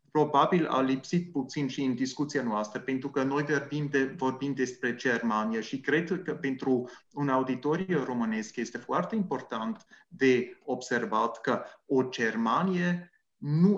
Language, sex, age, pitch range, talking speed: English, male, 30-49, 130-165 Hz, 140 wpm